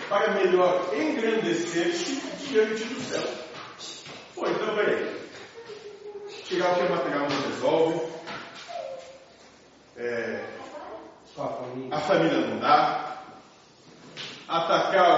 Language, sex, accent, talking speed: Portuguese, male, Brazilian, 85 wpm